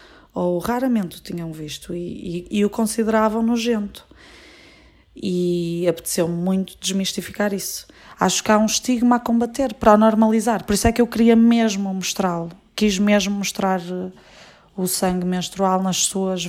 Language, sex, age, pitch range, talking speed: Portuguese, female, 20-39, 140-190 Hz, 150 wpm